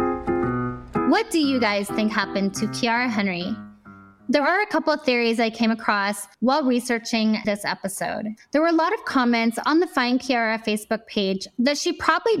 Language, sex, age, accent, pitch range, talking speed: English, female, 10-29, American, 225-295 Hz, 180 wpm